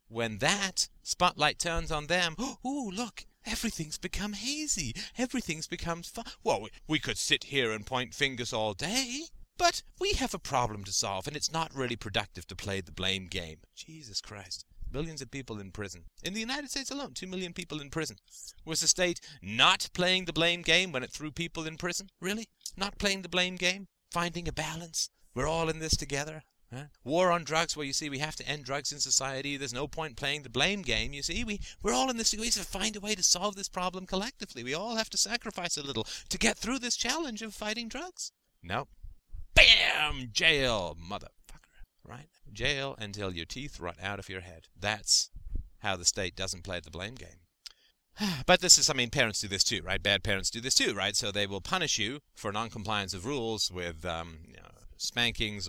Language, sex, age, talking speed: English, male, 40-59, 210 wpm